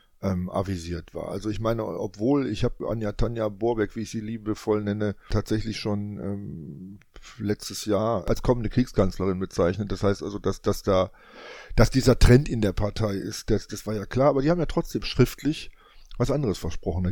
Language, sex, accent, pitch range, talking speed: German, male, German, 100-120 Hz, 190 wpm